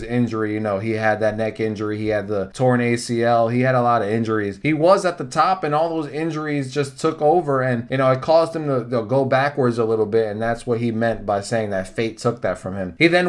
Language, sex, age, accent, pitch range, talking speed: English, male, 20-39, American, 125-175 Hz, 265 wpm